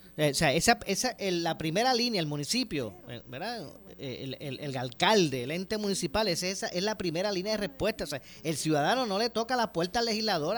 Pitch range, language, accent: 165-225 Hz, Spanish, American